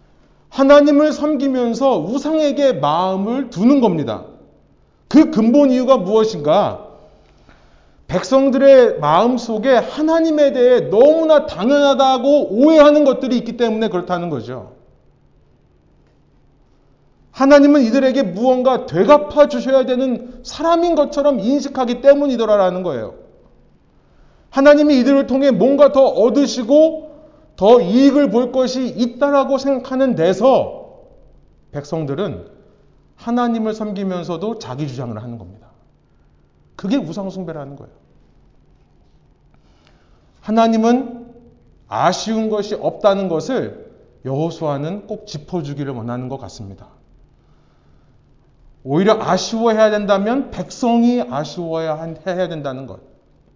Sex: male